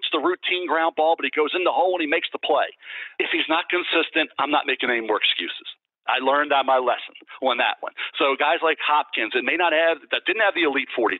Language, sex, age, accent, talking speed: English, male, 50-69, American, 245 wpm